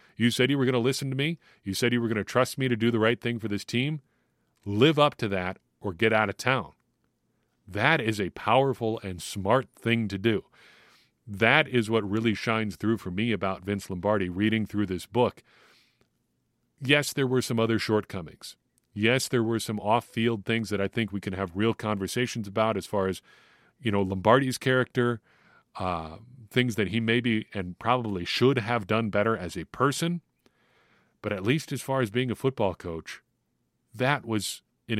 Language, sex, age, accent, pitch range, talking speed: English, male, 40-59, American, 100-120 Hz, 195 wpm